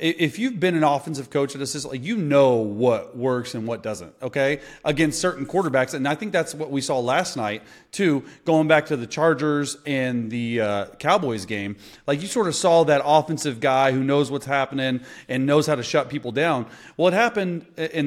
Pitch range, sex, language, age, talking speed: 130-170 Hz, male, English, 30-49, 210 wpm